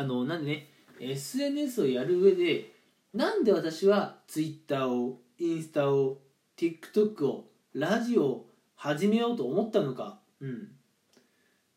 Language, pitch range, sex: Japanese, 140-210 Hz, male